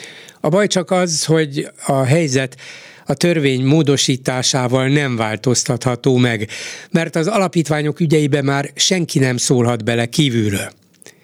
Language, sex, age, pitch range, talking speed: Hungarian, male, 60-79, 120-150 Hz, 125 wpm